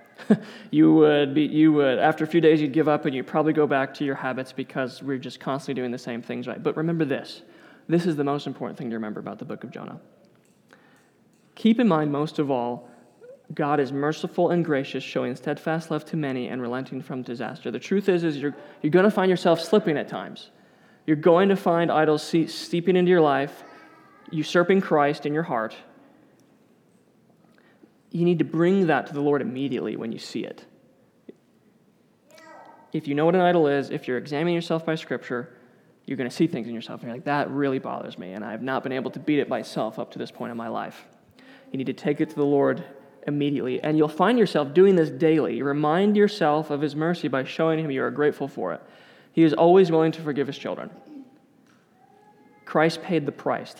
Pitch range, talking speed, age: 140-170 Hz, 210 wpm, 20-39